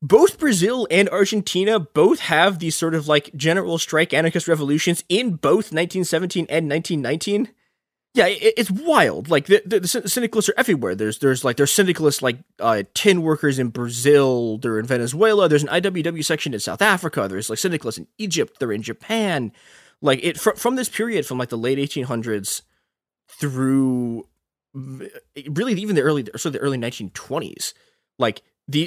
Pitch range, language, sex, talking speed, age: 115-185 Hz, English, male, 170 wpm, 20-39